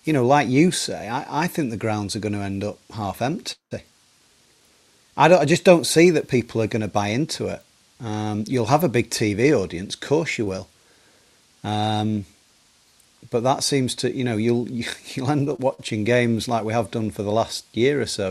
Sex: male